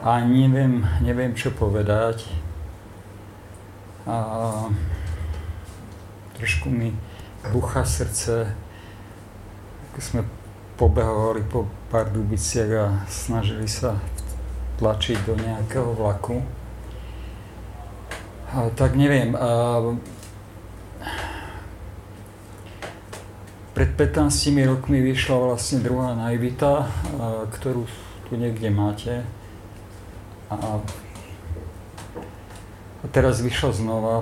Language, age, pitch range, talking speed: Czech, 50-69, 100-120 Hz, 75 wpm